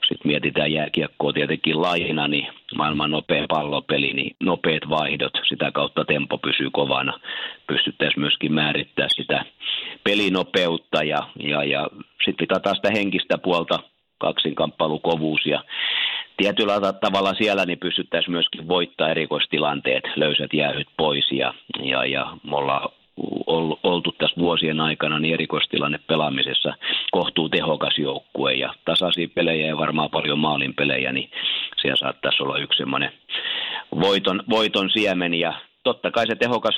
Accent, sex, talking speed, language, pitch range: native, male, 120 wpm, Finnish, 75-90 Hz